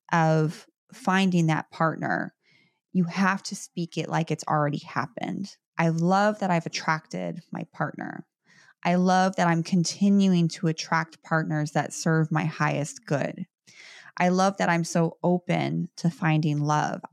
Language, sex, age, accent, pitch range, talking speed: English, female, 20-39, American, 155-185 Hz, 145 wpm